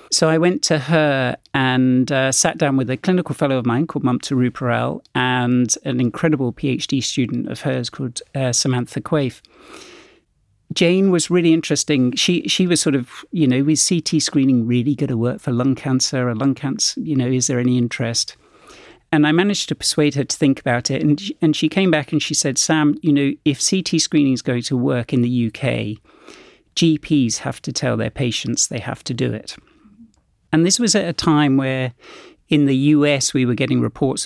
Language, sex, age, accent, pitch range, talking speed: English, male, 50-69, British, 125-155 Hz, 205 wpm